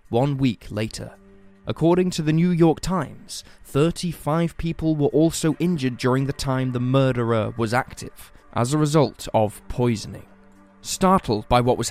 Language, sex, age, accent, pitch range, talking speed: English, male, 20-39, British, 125-155 Hz, 150 wpm